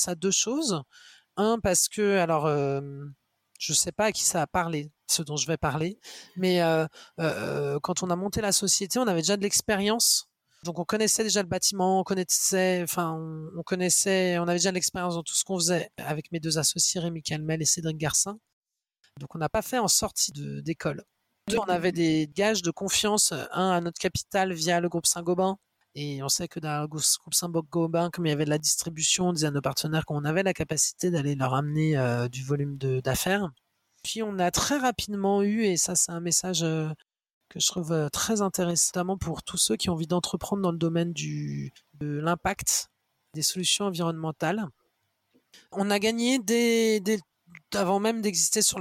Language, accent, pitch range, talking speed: French, French, 155-195 Hz, 200 wpm